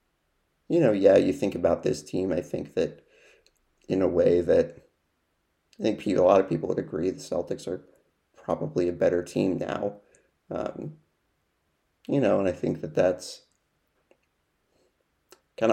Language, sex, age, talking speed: English, male, 30-49, 155 wpm